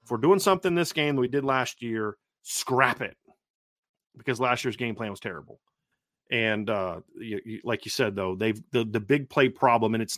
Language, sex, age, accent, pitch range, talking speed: English, male, 40-59, American, 110-140 Hz, 210 wpm